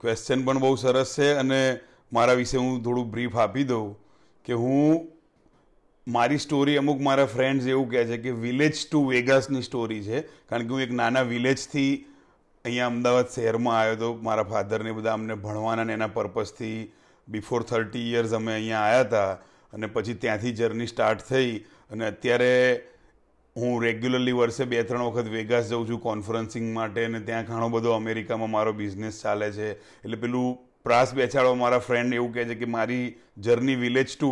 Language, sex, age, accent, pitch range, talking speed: Gujarati, male, 40-59, native, 115-135 Hz, 170 wpm